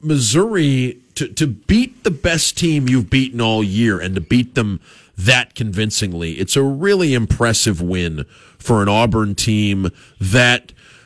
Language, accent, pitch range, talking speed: English, American, 105-130 Hz, 145 wpm